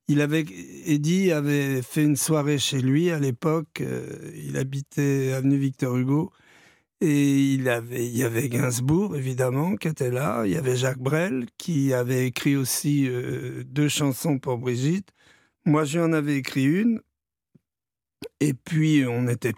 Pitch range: 135-170 Hz